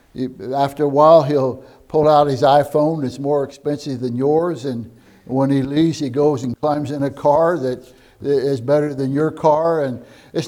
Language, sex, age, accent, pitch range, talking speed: English, male, 60-79, American, 145-190 Hz, 185 wpm